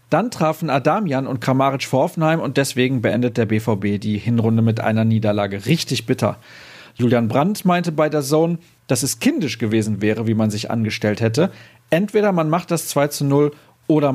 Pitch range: 120-155 Hz